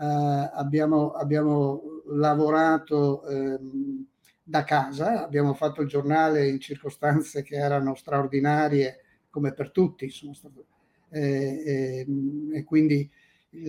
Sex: male